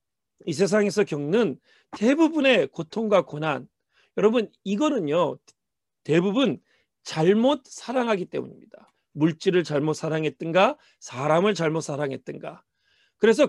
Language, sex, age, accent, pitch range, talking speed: English, male, 40-59, Korean, 170-250 Hz, 85 wpm